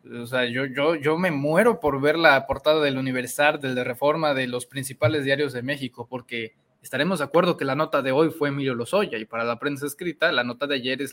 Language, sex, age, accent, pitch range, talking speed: Spanish, male, 20-39, Mexican, 135-190 Hz, 235 wpm